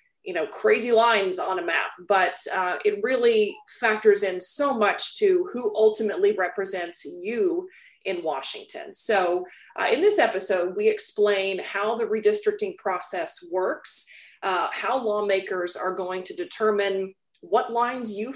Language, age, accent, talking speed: English, 30-49, American, 145 wpm